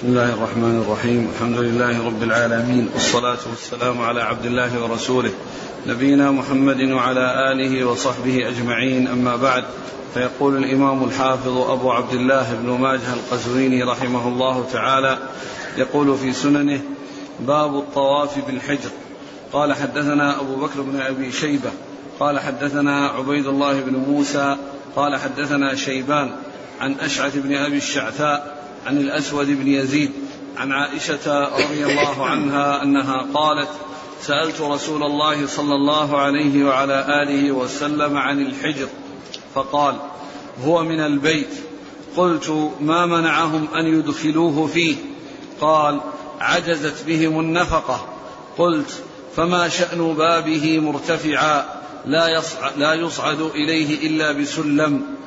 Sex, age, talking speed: male, 40-59, 120 wpm